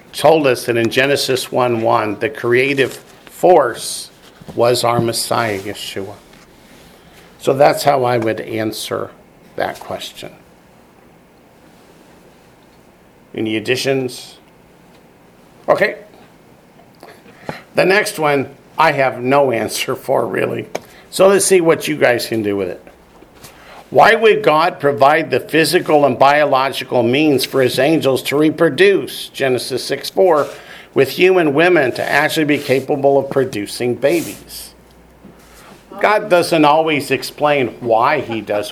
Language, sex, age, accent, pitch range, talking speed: English, male, 50-69, American, 120-150 Hz, 120 wpm